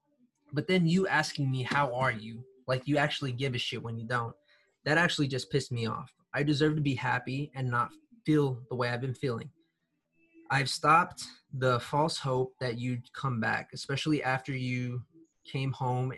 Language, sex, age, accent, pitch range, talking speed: English, male, 20-39, American, 120-145 Hz, 185 wpm